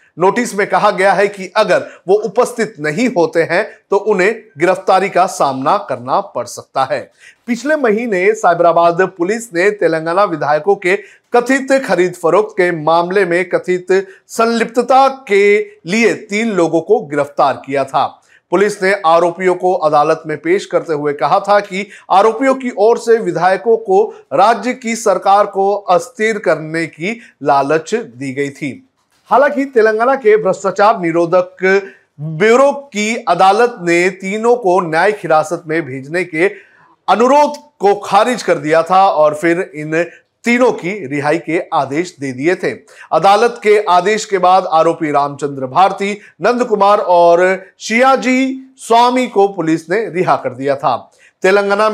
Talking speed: 150 wpm